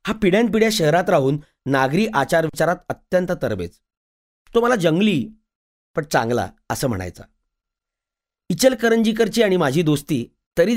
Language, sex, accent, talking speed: Marathi, male, native, 115 wpm